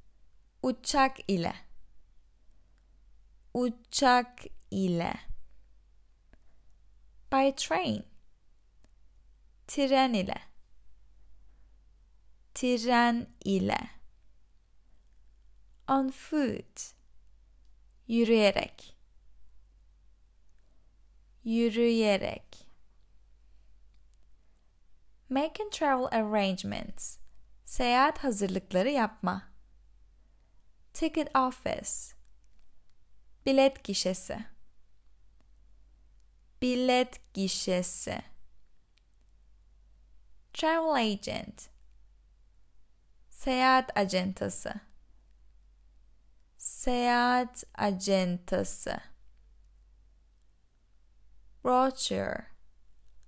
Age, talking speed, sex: 20-39, 40 wpm, female